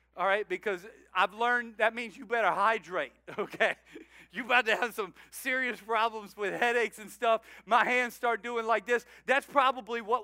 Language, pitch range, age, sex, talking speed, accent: English, 195-255 Hz, 50-69, male, 180 wpm, American